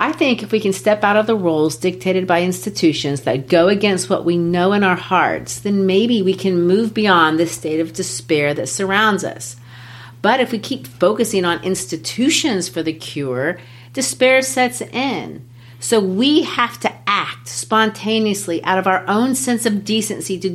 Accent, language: American, English